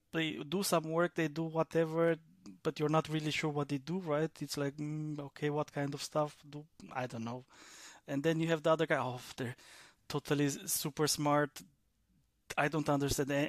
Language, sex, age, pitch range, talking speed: English, male, 20-39, 145-160 Hz, 185 wpm